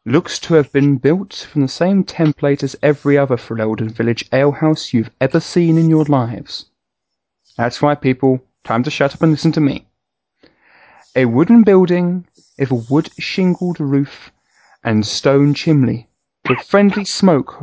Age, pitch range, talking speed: 30-49, 130-165 Hz, 155 wpm